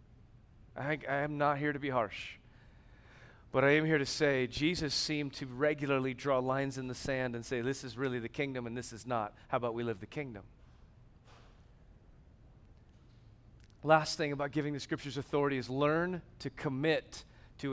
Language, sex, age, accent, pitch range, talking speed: English, male, 40-59, American, 115-155 Hz, 175 wpm